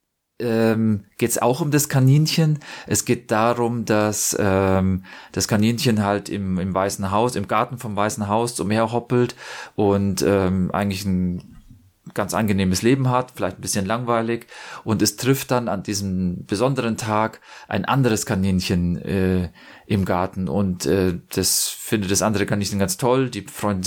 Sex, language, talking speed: male, English, 155 wpm